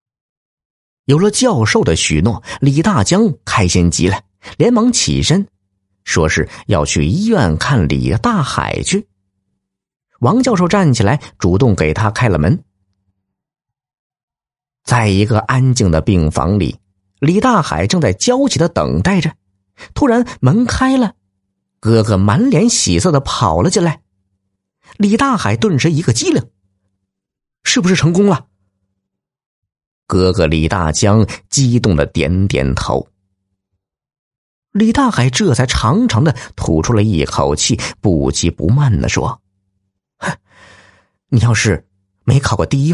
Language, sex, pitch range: Chinese, male, 95-140 Hz